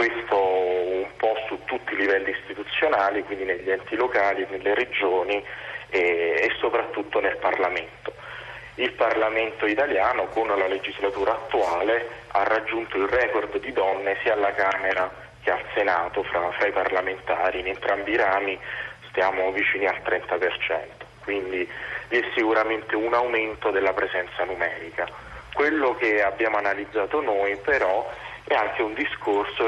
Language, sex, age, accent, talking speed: Italian, male, 30-49, native, 140 wpm